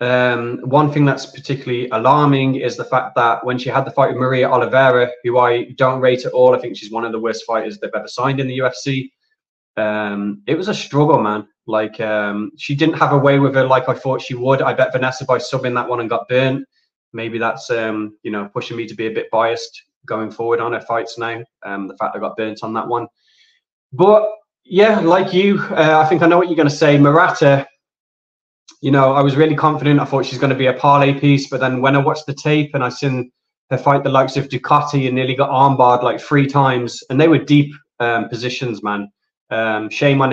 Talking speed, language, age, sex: 235 wpm, English, 20-39, male